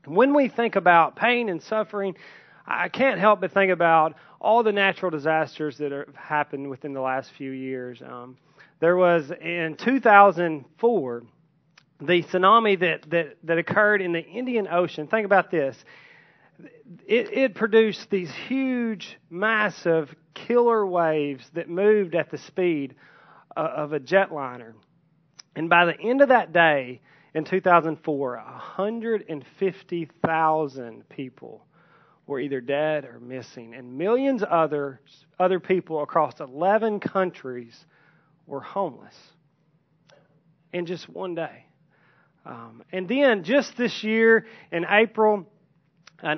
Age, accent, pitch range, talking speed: 30-49, American, 155-200 Hz, 130 wpm